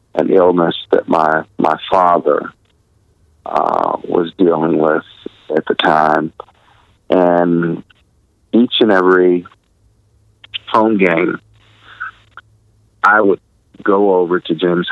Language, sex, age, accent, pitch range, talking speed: English, male, 40-59, American, 80-105 Hz, 100 wpm